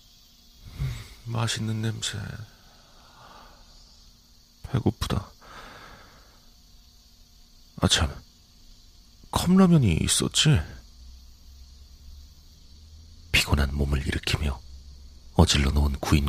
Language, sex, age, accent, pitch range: Korean, male, 40-59, native, 70-80 Hz